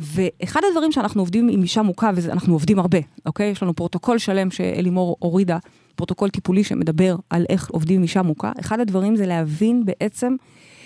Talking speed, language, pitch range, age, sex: 170 wpm, Hebrew, 195-285 Hz, 30-49, female